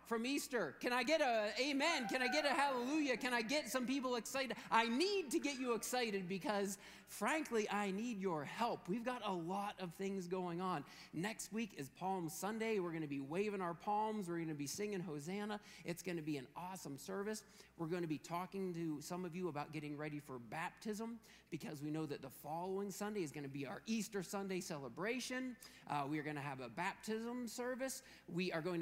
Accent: American